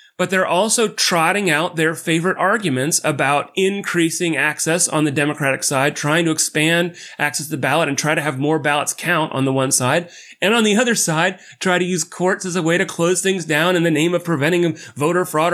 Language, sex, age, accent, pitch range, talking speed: English, male, 30-49, American, 150-180 Hz, 215 wpm